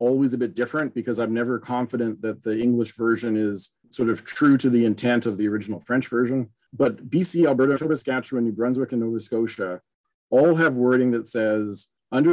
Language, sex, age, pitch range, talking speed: English, male, 40-59, 115-140 Hz, 195 wpm